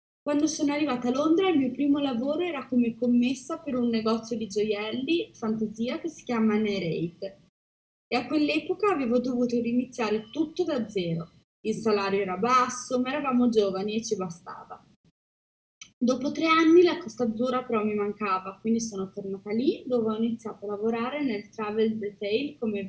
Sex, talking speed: female, 165 wpm